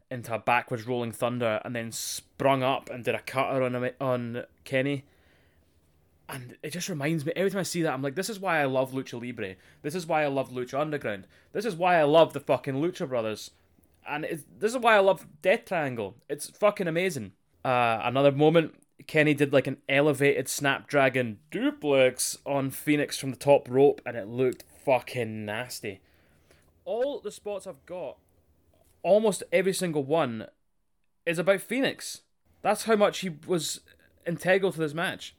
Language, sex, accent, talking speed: English, male, British, 180 wpm